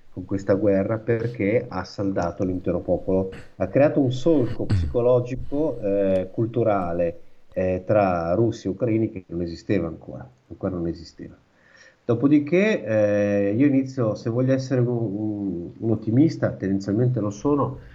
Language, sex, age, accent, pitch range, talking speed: Italian, male, 50-69, native, 95-125 Hz, 135 wpm